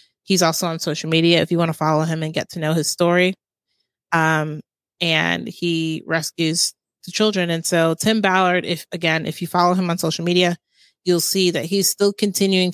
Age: 30-49